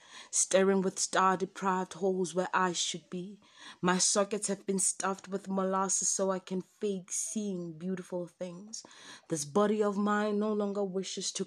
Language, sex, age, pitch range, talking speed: English, female, 30-49, 185-210 Hz, 155 wpm